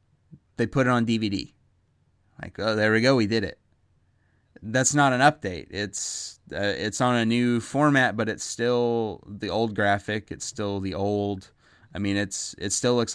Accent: American